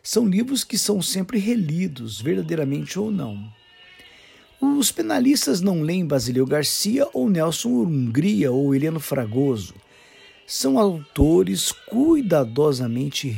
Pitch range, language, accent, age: 140-215 Hz, English, Brazilian, 50-69